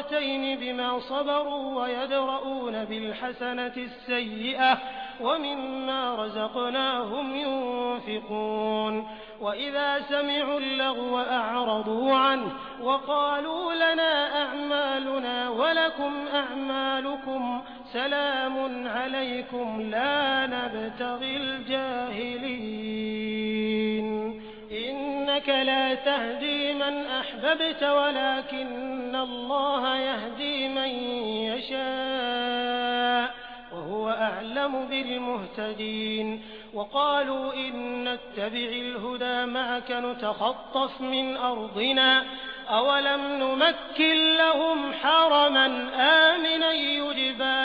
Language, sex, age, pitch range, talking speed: Hindi, male, 30-49, 245-280 Hz, 65 wpm